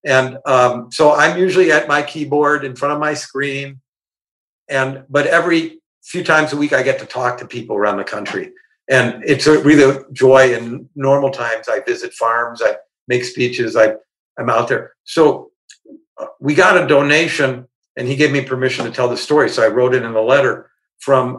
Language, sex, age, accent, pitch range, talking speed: English, male, 50-69, American, 125-155 Hz, 195 wpm